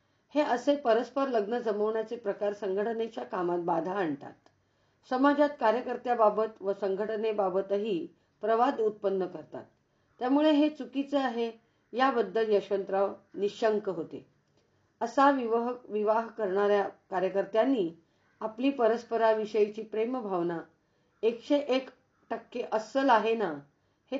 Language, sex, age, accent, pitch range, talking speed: Hindi, female, 50-69, native, 195-245 Hz, 35 wpm